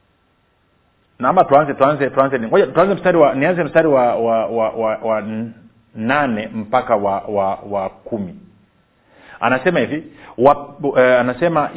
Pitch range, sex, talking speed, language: 120-165 Hz, male, 140 wpm, Swahili